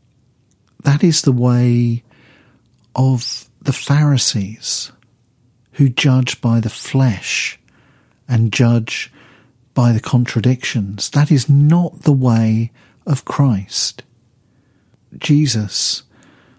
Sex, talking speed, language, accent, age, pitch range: male, 90 wpm, English, British, 50-69, 115-130 Hz